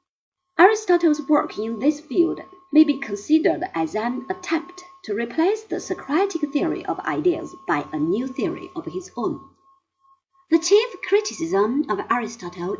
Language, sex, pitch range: Chinese, female, 295-360 Hz